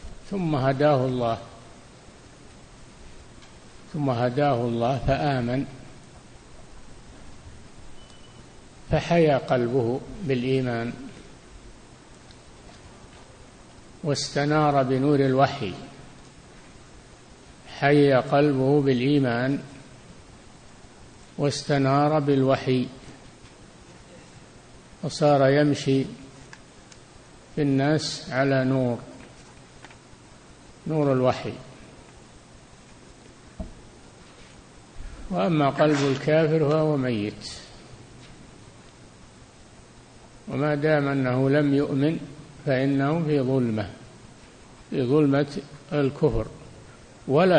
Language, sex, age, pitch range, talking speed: Arabic, male, 50-69, 130-150 Hz, 55 wpm